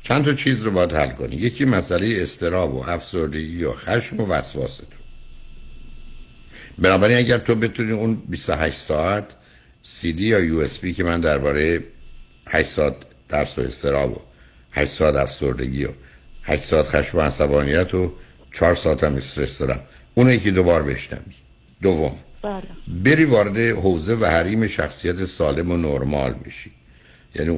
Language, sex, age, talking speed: Persian, male, 60-79, 150 wpm